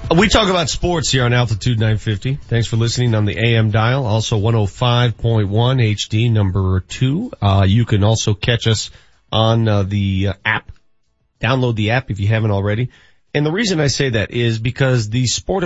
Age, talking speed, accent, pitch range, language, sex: 40-59, 185 wpm, American, 105-170 Hz, English, male